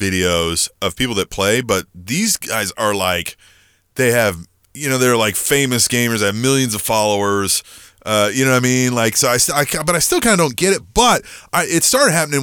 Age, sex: 30-49, male